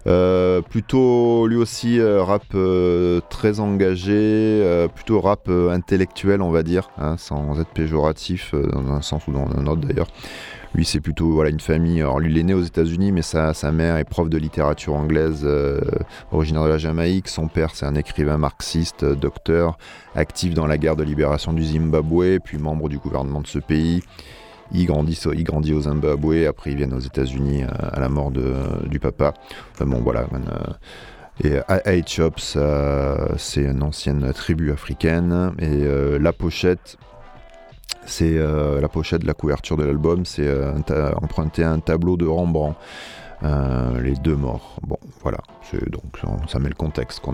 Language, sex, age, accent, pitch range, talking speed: French, male, 30-49, French, 75-85 Hz, 185 wpm